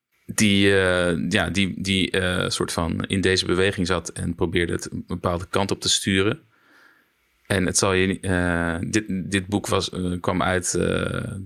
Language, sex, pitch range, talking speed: Dutch, male, 90-110 Hz, 140 wpm